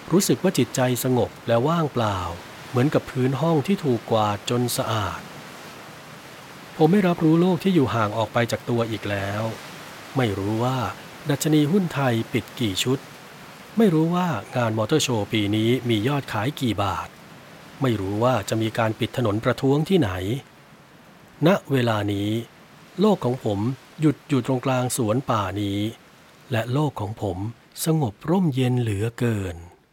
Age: 60-79